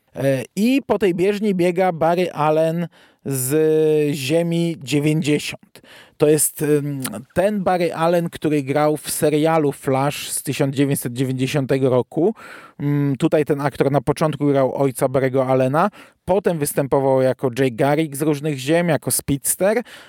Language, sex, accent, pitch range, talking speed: Polish, male, native, 145-195 Hz, 125 wpm